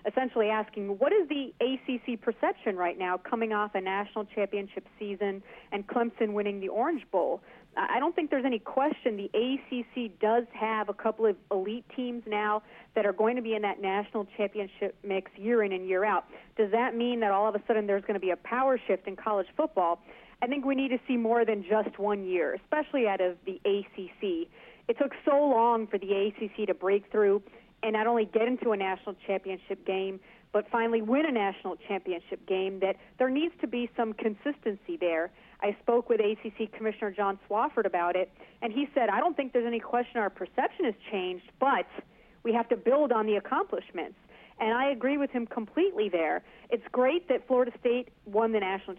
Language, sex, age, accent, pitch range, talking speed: English, female, 40-59, American, 195-240 Hz, 200 wpm